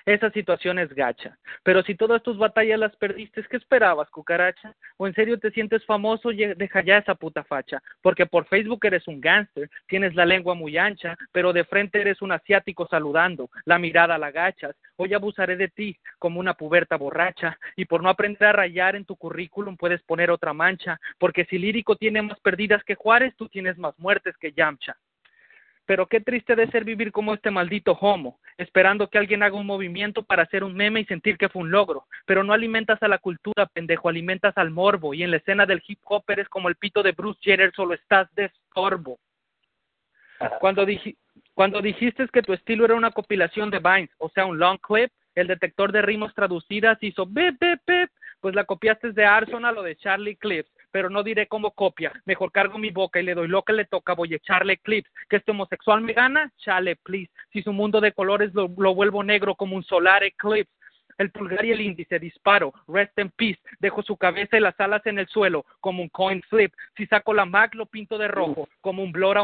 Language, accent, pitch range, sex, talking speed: English, Mexican, 185-215 Hz, male, 215 wpm